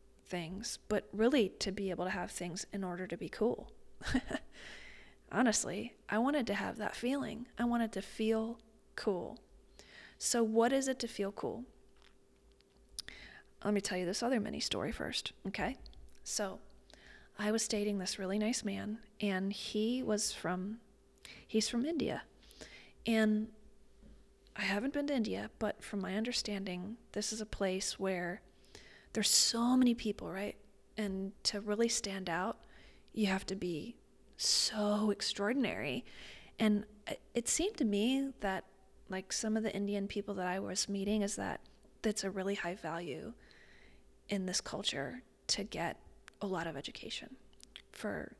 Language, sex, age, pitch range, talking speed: English, female, 30-49, 190-225 Hz, 150 wpm